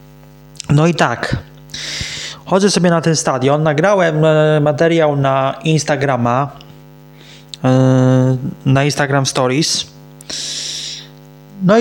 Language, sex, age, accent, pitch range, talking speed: Polish, male, 20-39, native, 135-170 Hz, 80 wpm